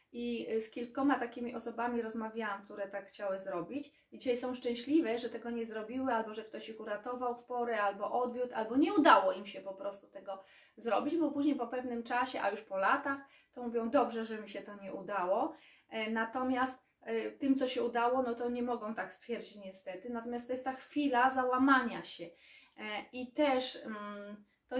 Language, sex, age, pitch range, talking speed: Polish, female, 20-39, 225-270 Hz, 185 wpm